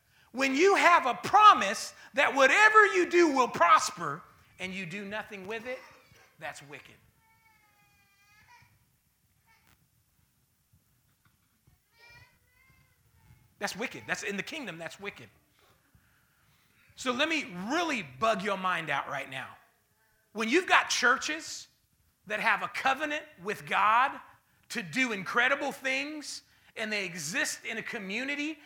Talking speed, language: 120 wpm, English